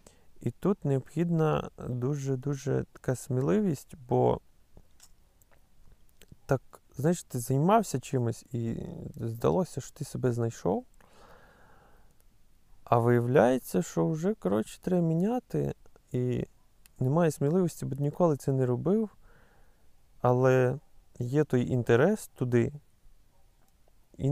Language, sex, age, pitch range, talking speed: Ukrainian, male, 20-39, 115-145 Hz, 95 wpm